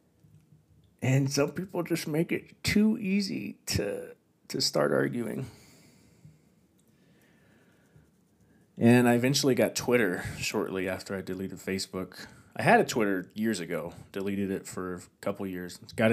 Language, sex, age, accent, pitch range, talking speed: English, male, 30-49, American, 95-135 Hz, 130 wpm